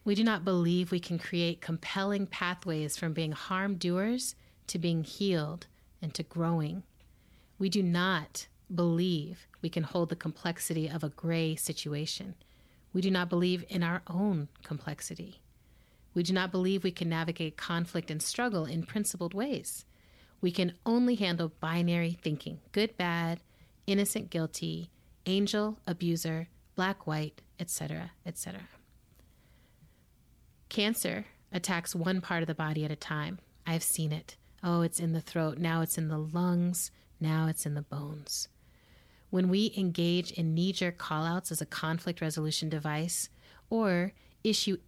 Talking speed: 150 wpm